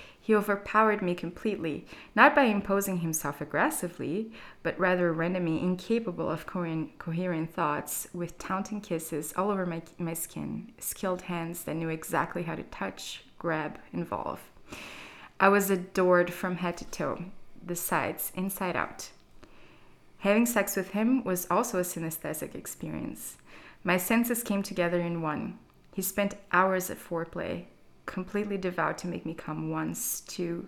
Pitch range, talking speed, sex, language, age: 170-205 Hz, 140 wpm, female, English, 20-39